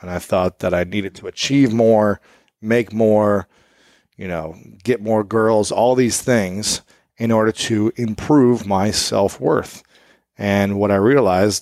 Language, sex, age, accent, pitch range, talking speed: English, male, 30-49, American, 95-115 Hz, 150 wpm